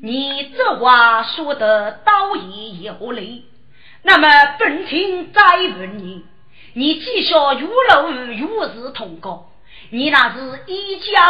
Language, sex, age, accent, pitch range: Chinese, female, 40-59, native, 225-295 Hz